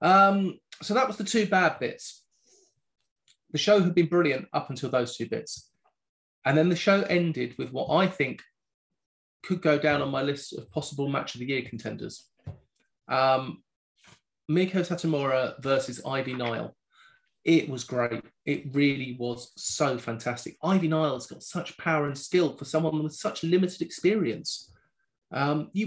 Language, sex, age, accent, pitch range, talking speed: English, male, 30-49, British, 140-180 Hz, 160 wpm